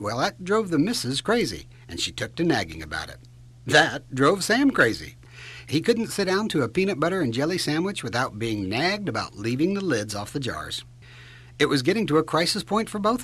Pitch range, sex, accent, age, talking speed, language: 120-200 Hz, male, American, 60-79, 215 wpm, English